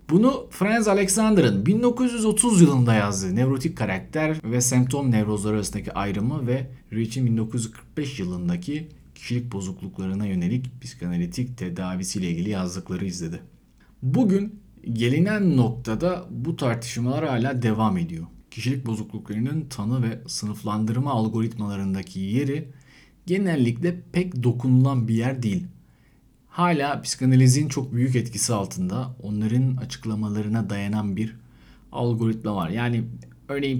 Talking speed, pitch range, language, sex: 105 wpm, 105-155 Hz, Turkish, male